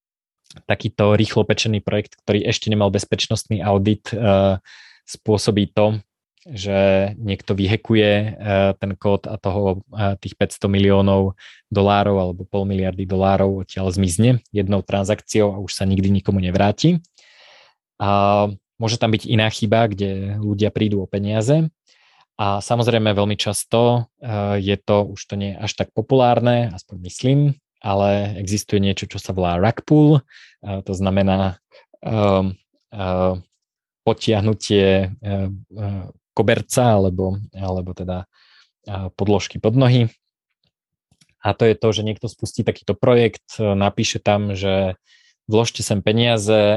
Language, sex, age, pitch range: Slovak, male, 20-39, 95-110 Hz